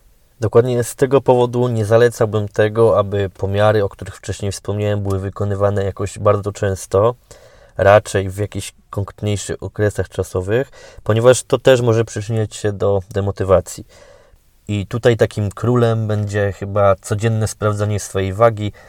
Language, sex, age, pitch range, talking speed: Polish, male, 20-39, 100-115 Hz, 135 wpm